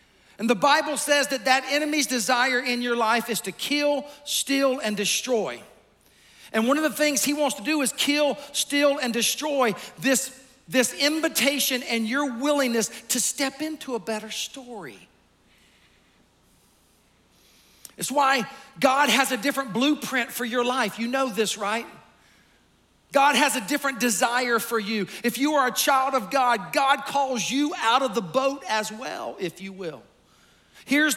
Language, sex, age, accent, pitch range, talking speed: English, male, 40-59, American, 210-275 Hz, 160 wpm